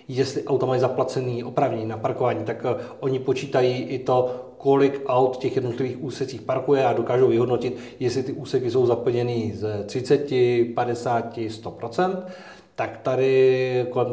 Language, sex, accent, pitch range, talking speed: Czech, male, native, 120-140 Hz, 140 wpm